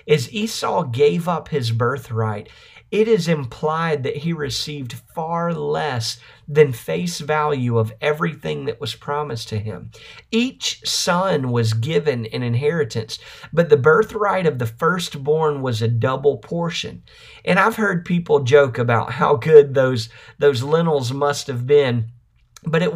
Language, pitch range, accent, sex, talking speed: English, 120-155 Hz, American, male, 145 wpm